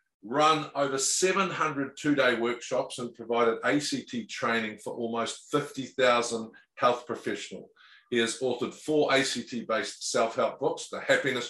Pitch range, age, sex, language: 120-155 Hz, 50-69, male, English